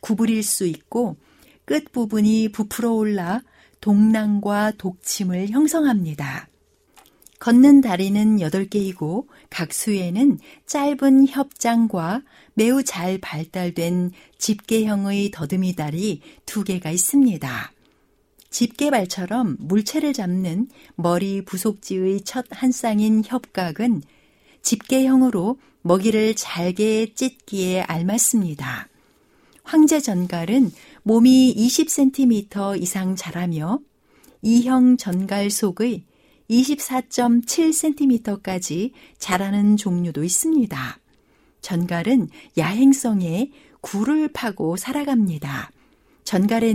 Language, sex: Korean, female